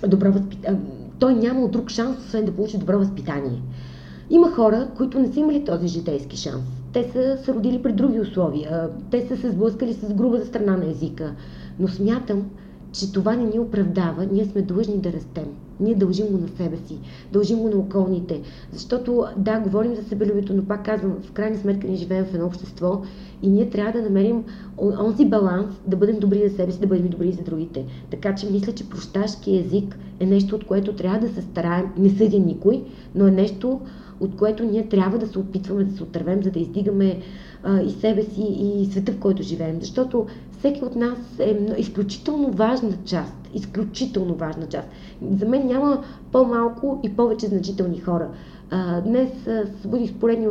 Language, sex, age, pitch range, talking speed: Bulgarian, female, 30-49, 185-225 Hz, 185 wpm